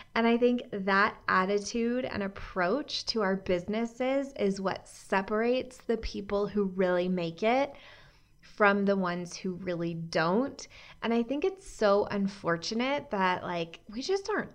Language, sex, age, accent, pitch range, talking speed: English, female, 20-39, American, 185-230 Hz, 150 wpm